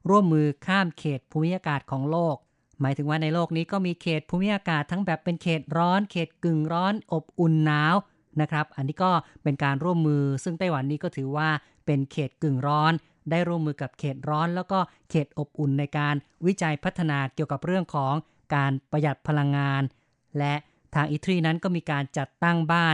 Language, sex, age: Thai, female, 30-49